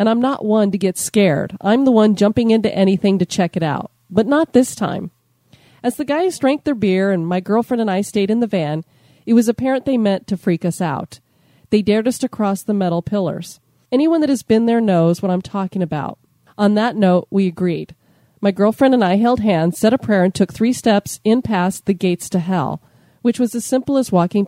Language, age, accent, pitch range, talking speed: English, 40-59, American, 180-225 Hz, 230 wpm